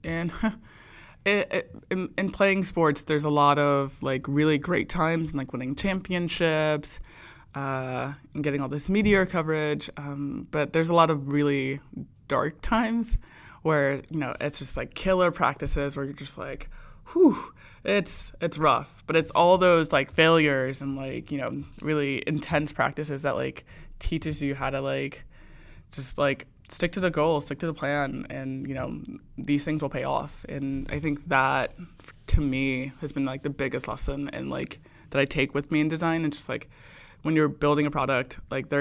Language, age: English, 20-39